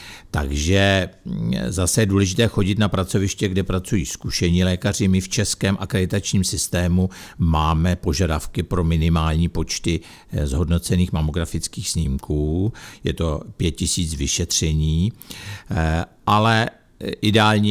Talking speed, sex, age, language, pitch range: 100 wpm, male, 60-79, Czech, 80-95 Hz